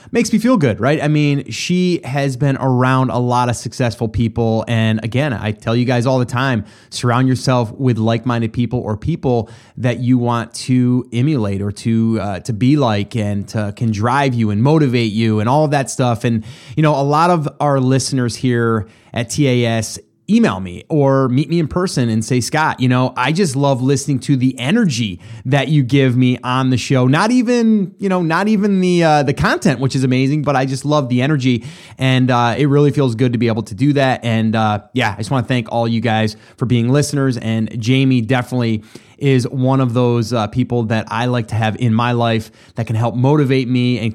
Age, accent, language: 30-49, American, English